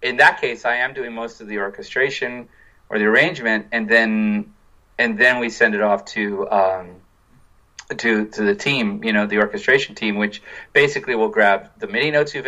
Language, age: English, 30-49